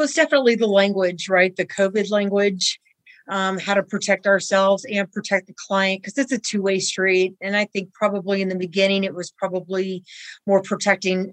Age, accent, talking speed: 40-59, American, 190 wpm